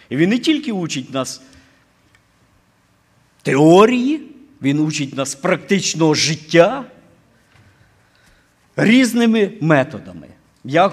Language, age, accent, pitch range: Ukrainian, 50-69, native, 135-210 Hz